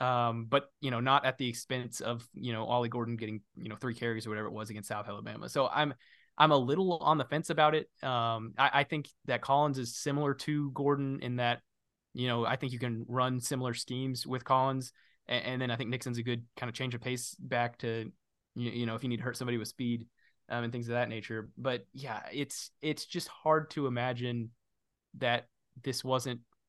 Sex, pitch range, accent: male, 115-135 Hz, American